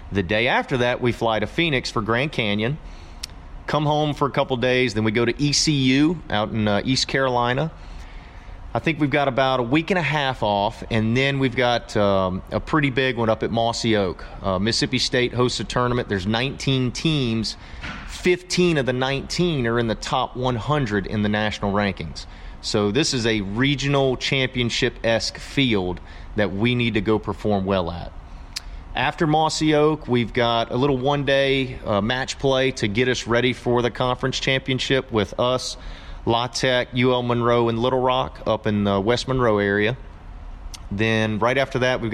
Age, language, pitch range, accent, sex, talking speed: 30-49, English, 105-135 Hz, American, male, 180 wpm